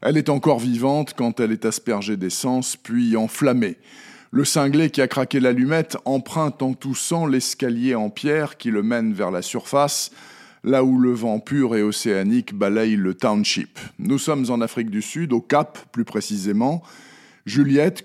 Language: French